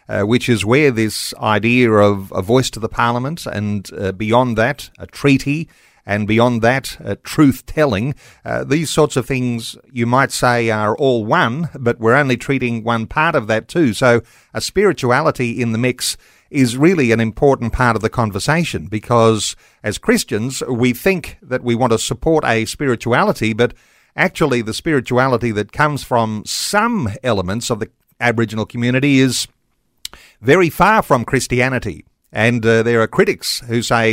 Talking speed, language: 165 wpm, English